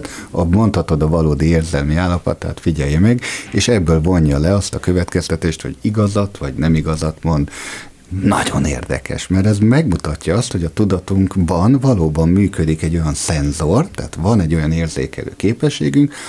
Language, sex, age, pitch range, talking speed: Hungarian, male, 50-69, 80-100 Hz, 150 wpm